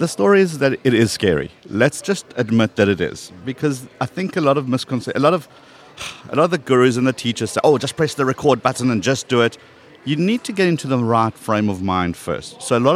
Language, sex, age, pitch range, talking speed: English, male, 50-69, 100-140 Hz, 250 wpm